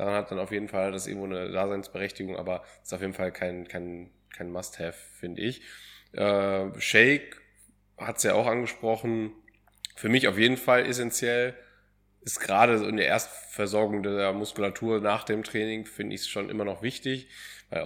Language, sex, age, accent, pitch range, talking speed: German, male, 20-39, German, 100-115 Hz, 175 wpm